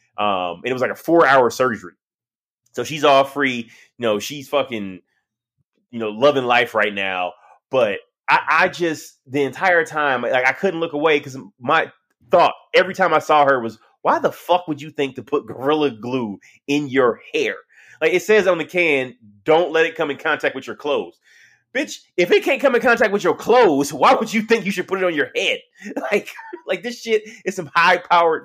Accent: American